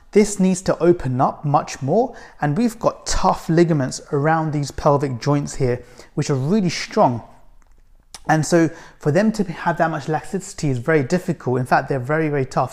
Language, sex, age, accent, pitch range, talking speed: English, male, 30-49, British, 145-195 Hz, 185 wpm